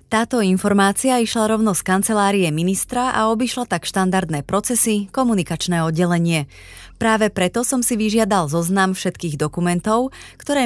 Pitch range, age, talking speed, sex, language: 160-215 Hz, 30-49, 130 wpm, female, Slovak